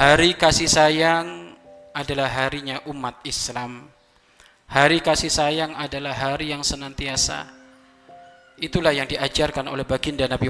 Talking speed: 115 wpm